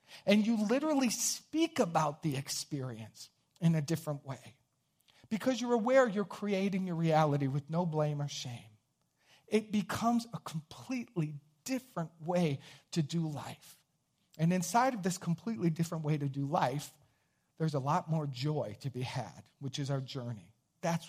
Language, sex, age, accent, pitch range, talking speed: English, male, 50-69, American, 140-175 Hz, 155 wpm